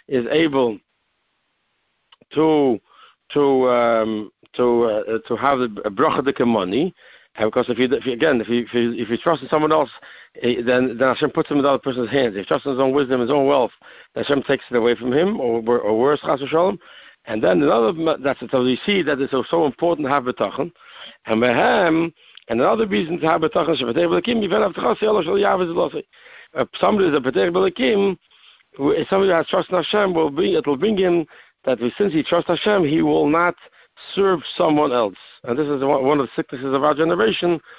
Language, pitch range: English, 125-165 Hz